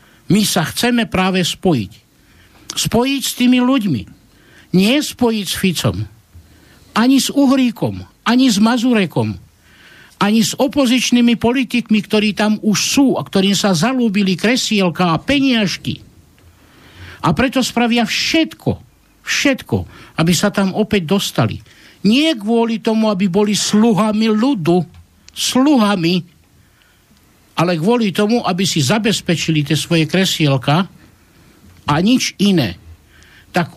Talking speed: 115 wpm